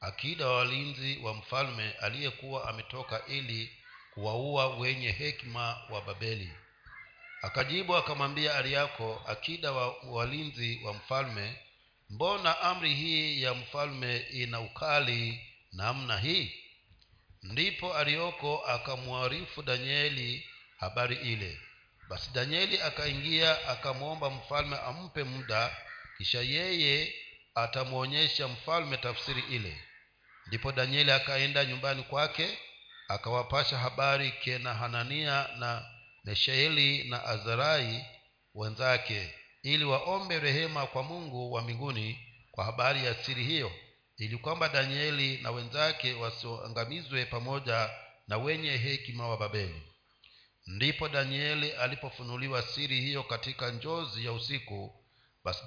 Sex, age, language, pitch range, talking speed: male, 50-69, Swahili, 115-145 Hz, 105 wpm